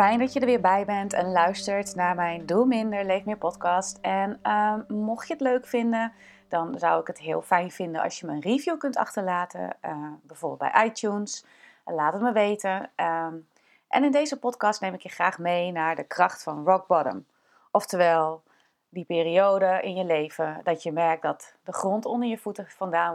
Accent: Dutch